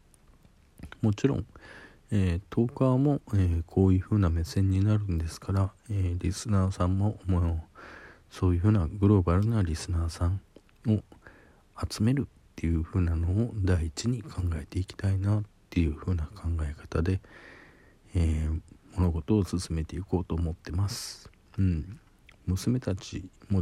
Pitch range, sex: 85-100 Hz, male